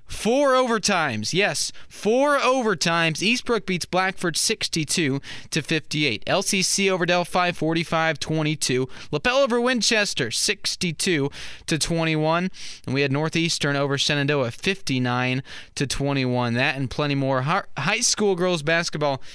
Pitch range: 135-175 Hz